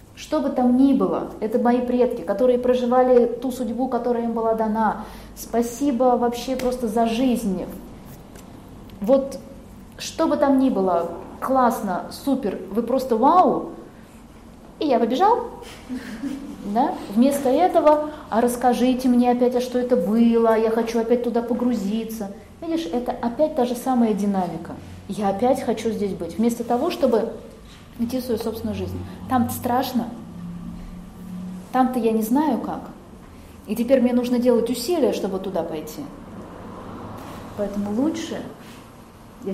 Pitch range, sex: 210-260 Hz, female